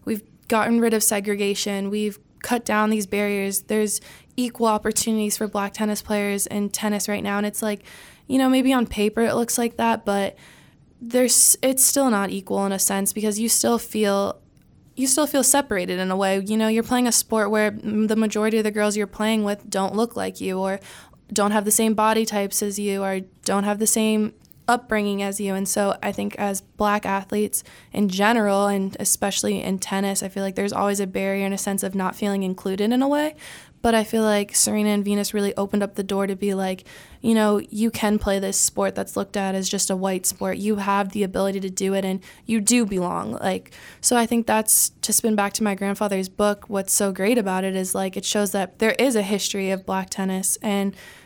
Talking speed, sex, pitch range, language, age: 220 wpm, female, 195-220 Hz, English, 20-39